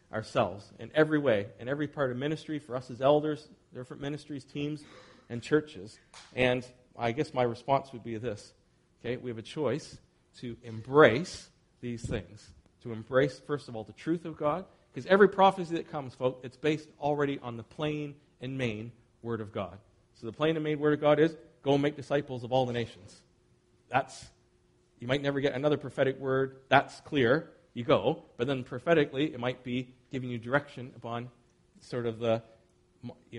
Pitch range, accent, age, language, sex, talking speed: 115-145 Hz, American, 40-59, English, male, 185 wpm